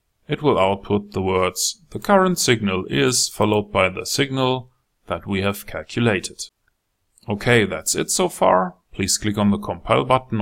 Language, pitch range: English, 100-120 Hz